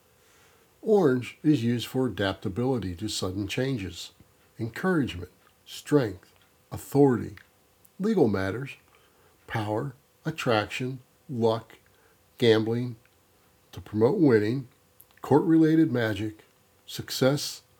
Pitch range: 100-145 Hz